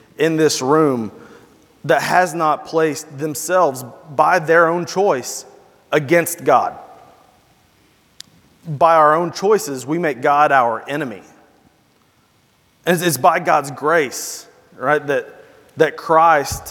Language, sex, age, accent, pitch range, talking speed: English, male, 30-49, American, 145-190 Hz, 120 wpm